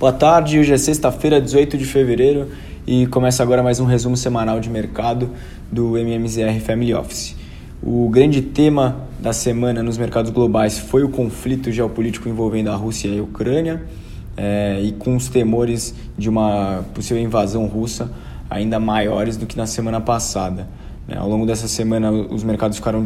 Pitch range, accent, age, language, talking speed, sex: 105-115 Hz, Brazilian, 20-39, Portuguese, 165 wpm, male